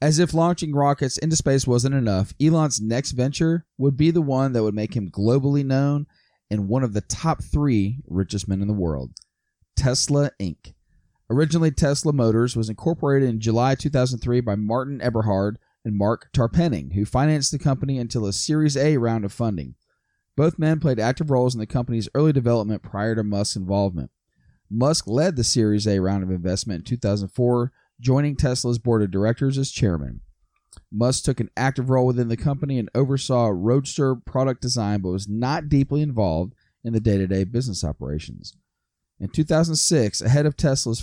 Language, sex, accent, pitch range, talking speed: English, male, American, 105-140 Hz, 175 wpm